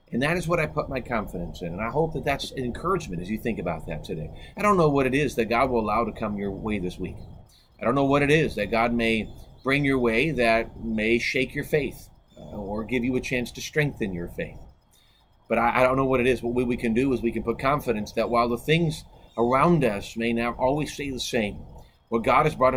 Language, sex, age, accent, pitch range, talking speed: English, male, 40-59, American, 115-140 Hz, 260 wpm